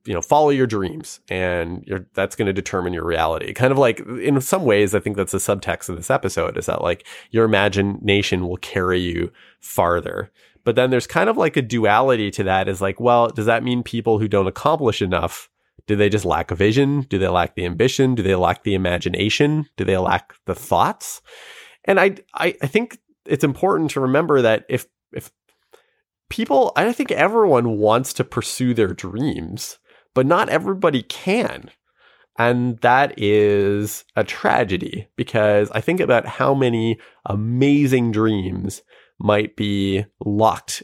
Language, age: English, 30-49